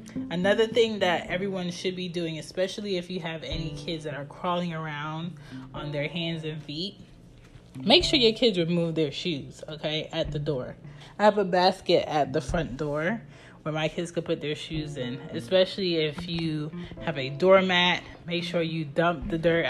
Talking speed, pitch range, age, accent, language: 185 wpm, 150-180 Hz, 20-39, American, English